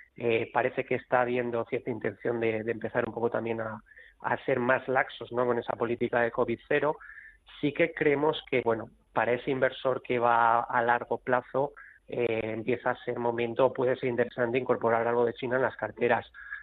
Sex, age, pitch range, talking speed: male, 30-49, 120-135 Hz, 190 wpm